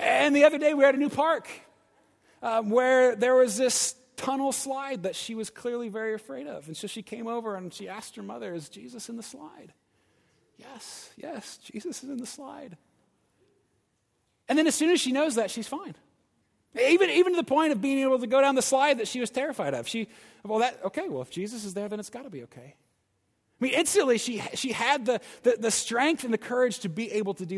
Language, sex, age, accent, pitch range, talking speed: English, male, 30-49, American, 200-270 Hz, 235 wpm